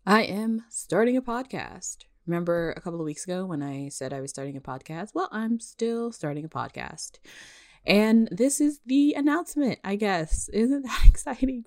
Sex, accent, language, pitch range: female, American, English, 150-235 Hz